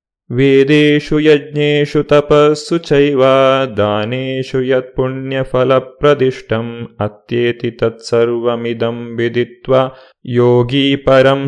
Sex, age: male, 30-49